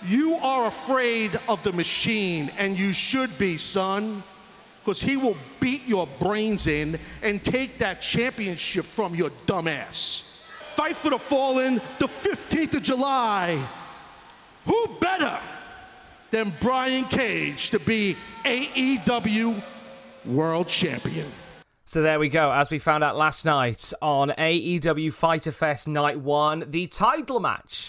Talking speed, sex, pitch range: 135 wpm, male, 120-190 Hz